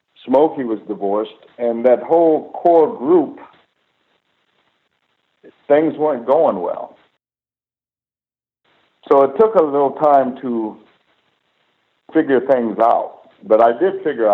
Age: 60-79